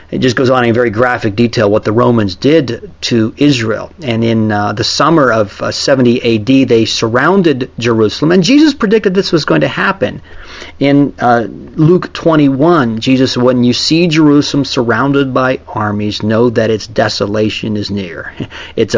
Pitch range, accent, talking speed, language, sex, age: 105-125 Hz, American, 170 wpm, English, male, 40-59